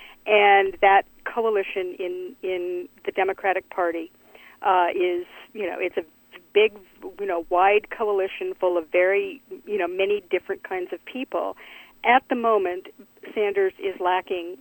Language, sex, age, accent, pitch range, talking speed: English, female, 50-69, American, 180-245 Hz, 145 wpm